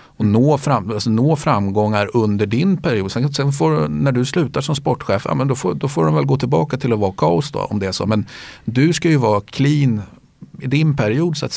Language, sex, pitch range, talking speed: Swedish, male, 100-130 Hz, 195 wpm